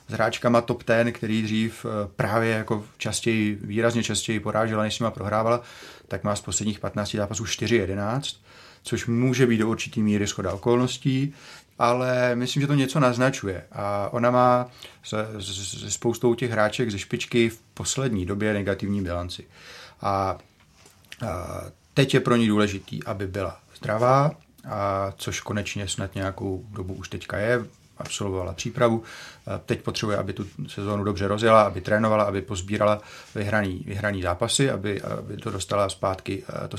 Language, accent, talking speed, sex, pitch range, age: Czech, native, 150 wpm, male, 100-125 Hz, 30-49